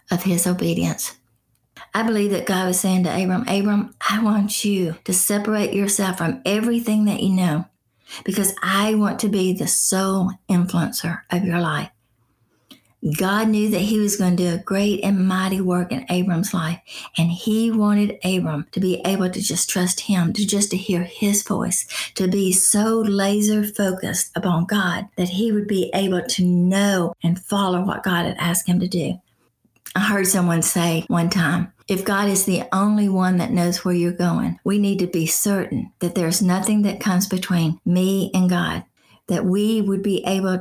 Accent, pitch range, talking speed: American, 180-205 Hz, 185 wpm